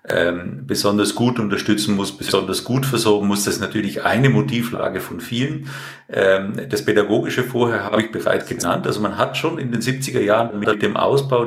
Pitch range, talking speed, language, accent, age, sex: 100-125 Hz, 175 wpm, German, German, 50-69, male